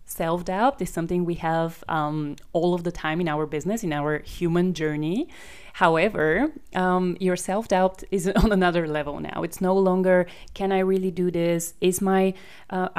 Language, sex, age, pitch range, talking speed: Bulgarian, female, 20-39, 165-185 Hz, 170 wpm